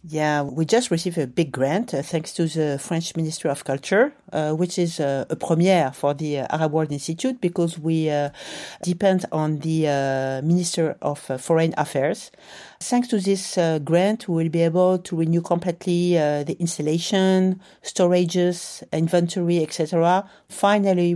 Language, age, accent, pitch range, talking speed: English, 40-59, French, 155-190 Hz, 160 wpm